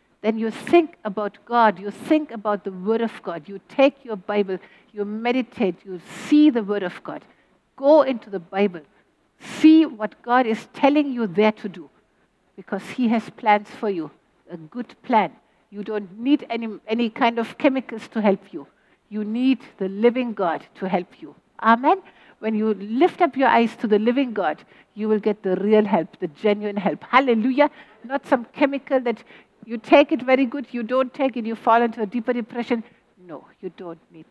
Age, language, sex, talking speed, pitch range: 60-79, English, female, 190 wpm, 205-250 Hz